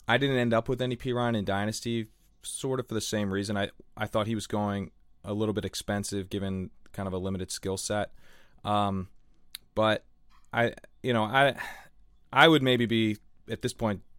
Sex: male